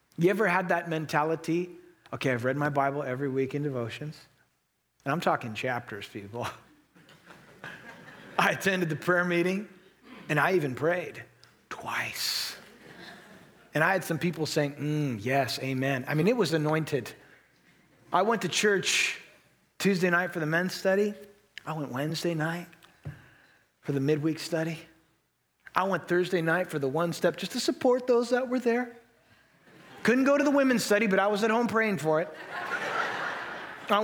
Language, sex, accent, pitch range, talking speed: English, male, American, 155-210 Hz, 160 wpm